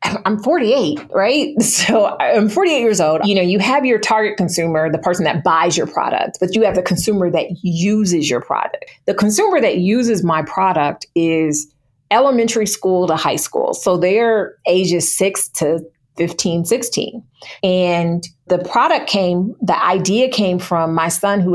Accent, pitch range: American, 170-215 Hz